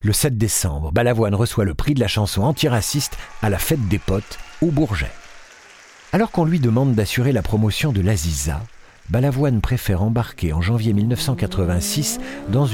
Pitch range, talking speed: 95-150 Hz, 160 wpm